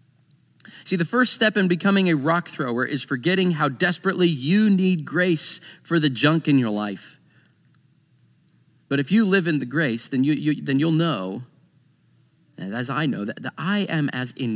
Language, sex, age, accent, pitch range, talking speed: English, male, 40-59, American, 120-160 Hz, 185 wpm